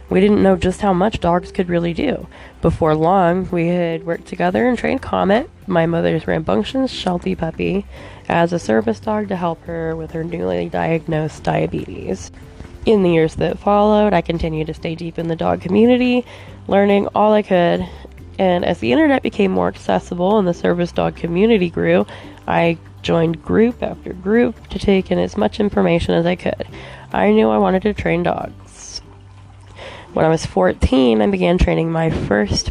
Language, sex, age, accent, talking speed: English, female, 20-39, American, 180 wpm